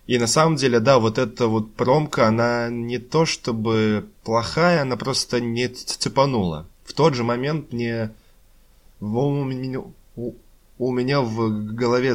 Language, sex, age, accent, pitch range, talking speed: Russian, male, 20-39, native, 105-125 Hz, 135 wpm